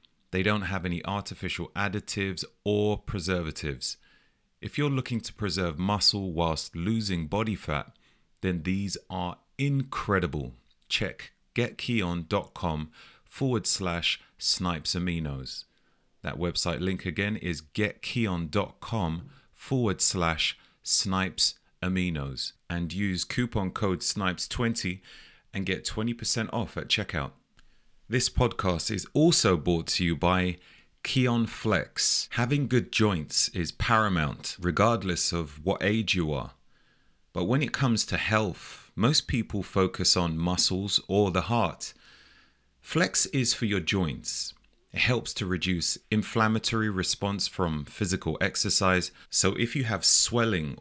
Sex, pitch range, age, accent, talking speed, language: male, 85-110 Hz, 30-49, British, 120 wpm, English